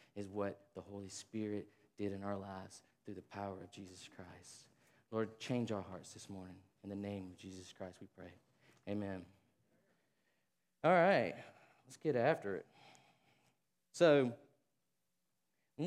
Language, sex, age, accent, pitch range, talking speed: English, male, 20-39, American, 105-120 Hz, 145 wpm